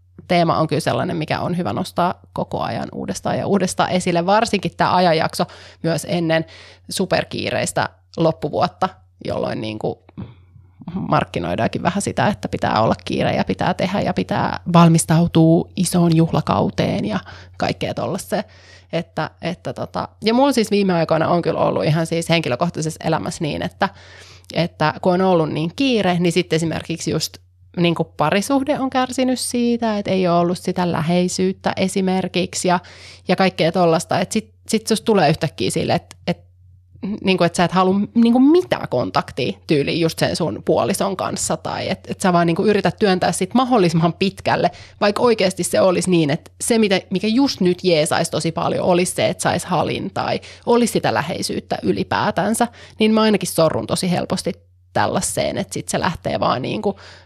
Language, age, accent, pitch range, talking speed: Finnish, 30-49, native, 160-195 Hz, 160 wpm